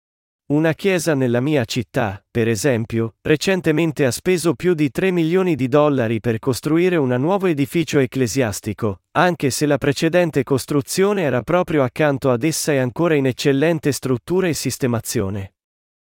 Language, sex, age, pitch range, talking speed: Italian, male, 40-59, 125-160 Hz, 145 wpm